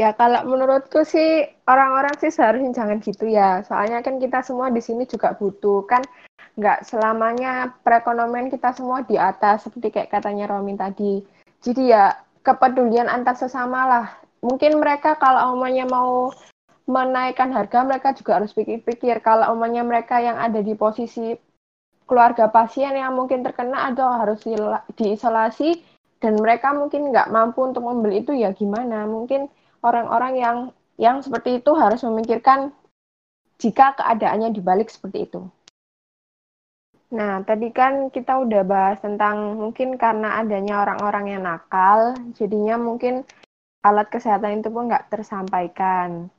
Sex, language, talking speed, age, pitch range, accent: female, Indonesian, 140 wpm, 10-29, 210-255 Hz, native